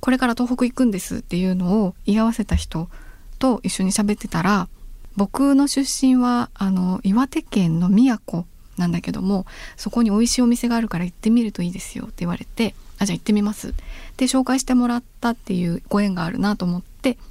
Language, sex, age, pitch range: Japanese, female, 20-39, 185-240 Hz